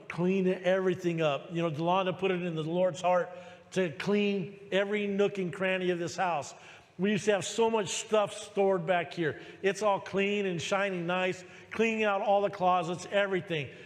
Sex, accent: male, American